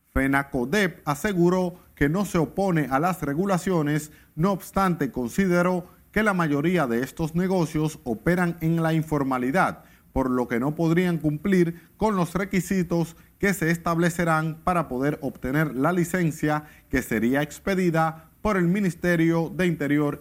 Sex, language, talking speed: male, Spanish, 140 wpm